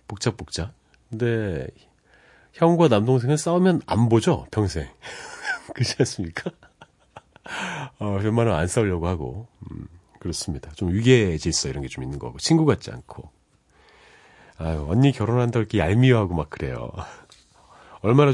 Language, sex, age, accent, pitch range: Korean, male, 40-59, native, 85-125 Hz